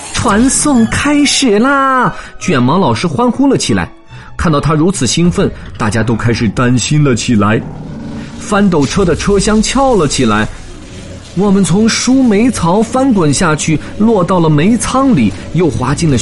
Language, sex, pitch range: Chinese, male, 145-225 Hz